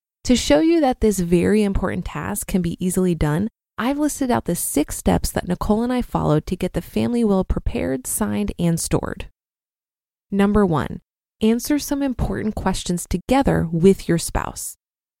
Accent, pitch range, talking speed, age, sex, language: American, 175-230 Hz, 165 wpm, 20-39, female, English